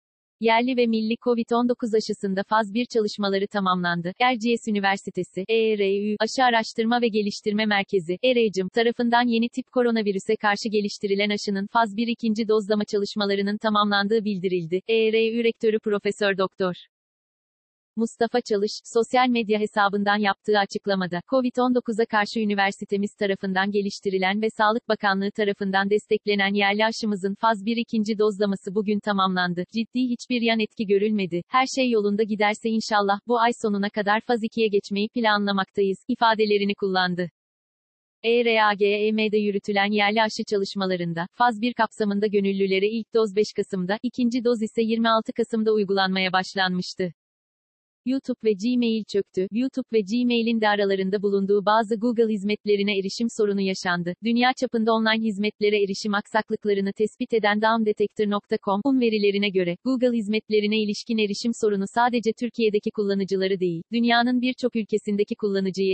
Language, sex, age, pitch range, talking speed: Turkish, female, 40-59, 200-230 Hz, 130 wpm